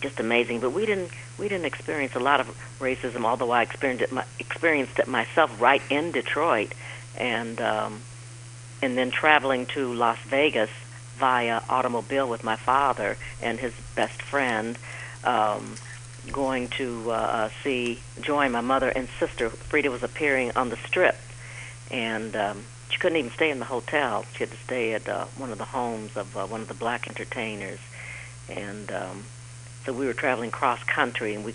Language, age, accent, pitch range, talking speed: English, 50-69, American, 115-130 Hz, 175 wpm